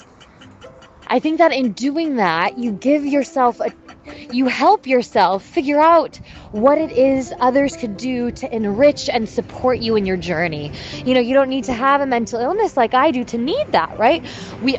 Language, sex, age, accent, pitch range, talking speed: English, female, 20-39, American, 230-315 Hz, 190 wpm